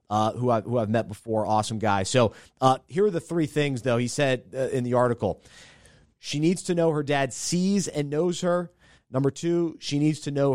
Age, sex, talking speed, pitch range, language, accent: 30-49, male, 215 wpm, 110-155 Hz, English, American